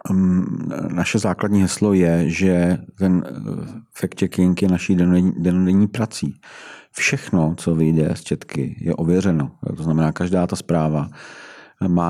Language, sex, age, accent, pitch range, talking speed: Czech, male, 50-69, native, 85-90 Hz, 130 wpm